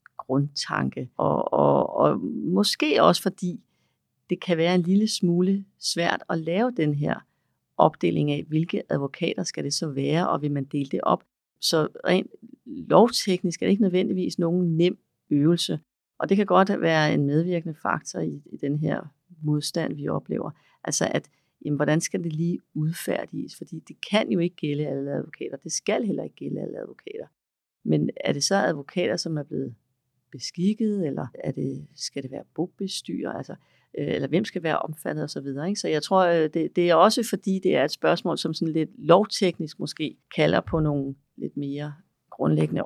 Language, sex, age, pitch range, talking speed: Danish, female, 40-59, 140-180 Hz, 180 wpm